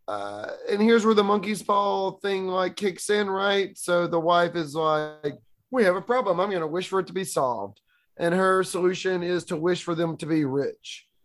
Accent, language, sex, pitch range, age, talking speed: American, English, male, 155-195 Hz, 30-49, 215 wpm